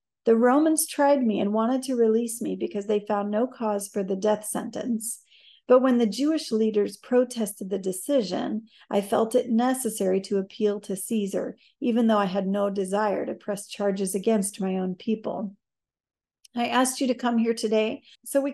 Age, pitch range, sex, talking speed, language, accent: 40-59, 205-250 Hz, female, 180 wpm, English, American